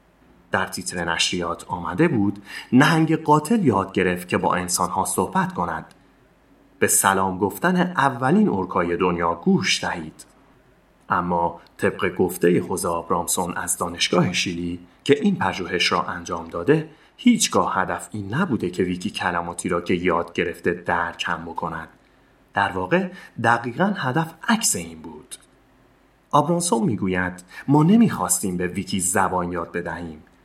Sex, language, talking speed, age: male, Persian, 130 wpm, 30-49